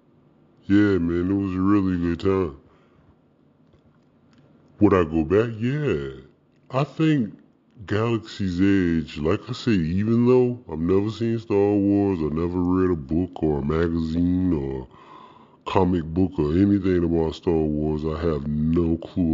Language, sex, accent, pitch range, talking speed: English, female, American, 75-95 Hz, 145 wpm